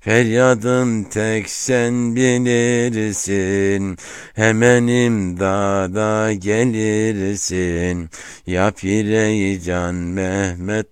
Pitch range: 90-115 Hz